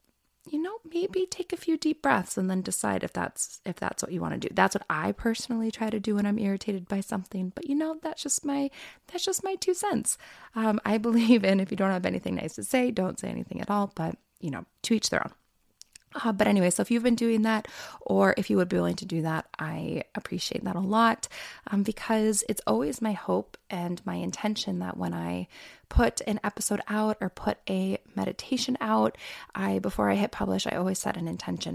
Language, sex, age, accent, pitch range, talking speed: English, female, 20-39, American, 175-230 Hz, 230 wpm